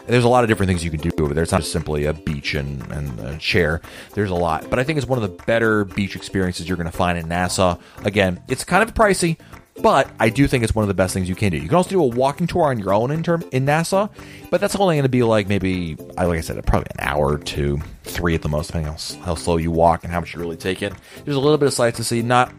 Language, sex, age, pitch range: English, male, 30-49, 85-120 Hz